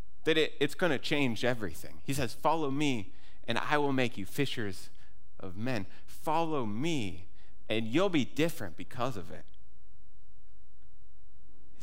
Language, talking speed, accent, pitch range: English, 140 wpm, American, 85-140 Hz